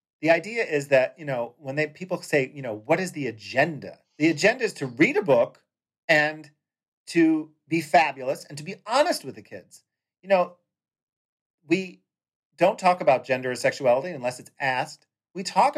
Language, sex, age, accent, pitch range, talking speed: English, male, 40-59, American, 135-180 Hz, 185 wpm